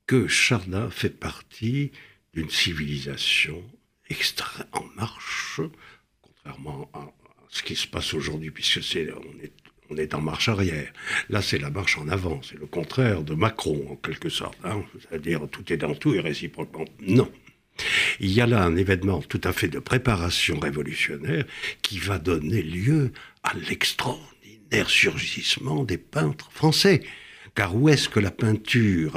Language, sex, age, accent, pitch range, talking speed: French, male, 60-79, French, 80-120 Hz, 150 wpm